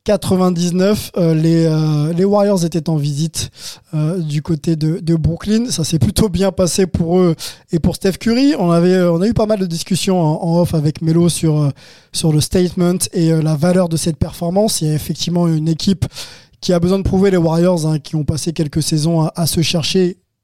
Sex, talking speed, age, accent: male, 215 wpm, 20-39, French